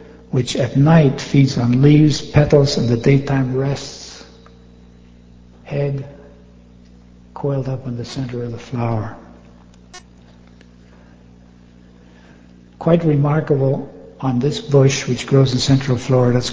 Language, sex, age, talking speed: English, male, 60-79, 115 wpm